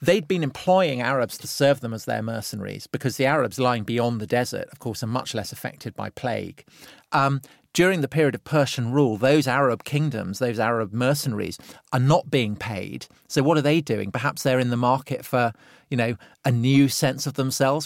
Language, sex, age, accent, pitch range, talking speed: English, male, 40-59, British, 120-145 Hz, 200 wpm